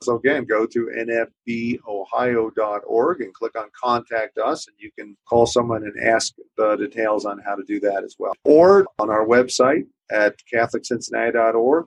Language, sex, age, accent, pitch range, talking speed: English, male, 40-59, American, 110-135 Hz, 160 wpm